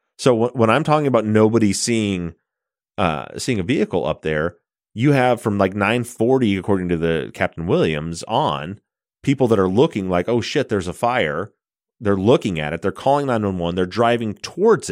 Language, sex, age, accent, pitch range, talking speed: English, male, 30-49, American, 90-125 Hz, 175 wpm